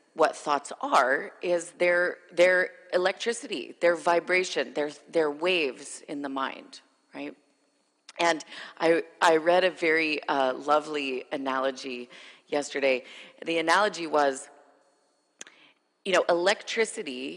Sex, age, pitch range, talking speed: female, 30-49, 140-175 Hz, 110 wpm